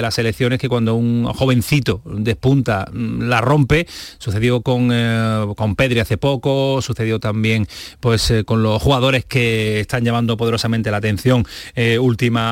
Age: 30-49